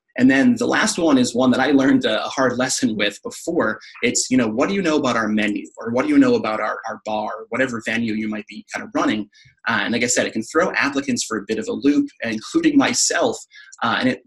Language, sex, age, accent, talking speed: English, male, 30-49, American, 260 wpm